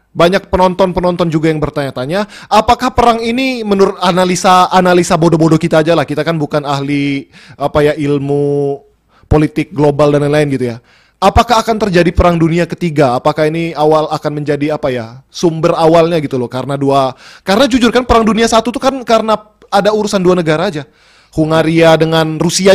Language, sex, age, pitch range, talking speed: Indonesian, male, 20-39, 155-205 Hz, 170 wpm